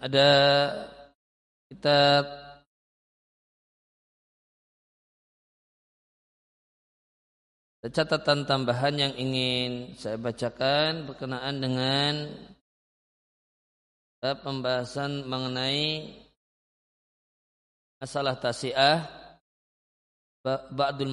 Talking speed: 45 wpm